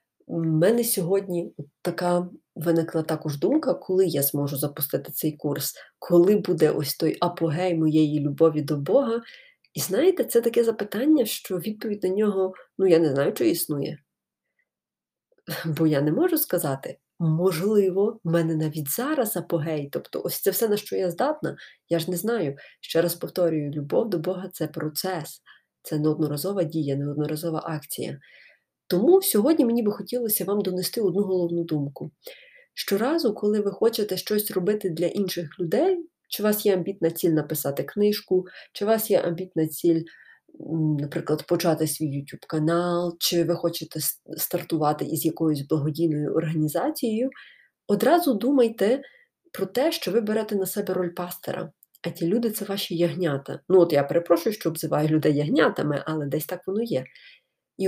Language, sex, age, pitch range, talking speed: Ukrainian, female, 20-39, 160-210 Hz, 155 wpm